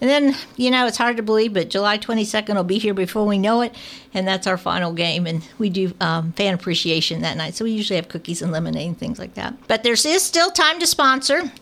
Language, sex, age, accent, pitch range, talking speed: English, female, 50-69, American, 180-225 Hz, 255 wpm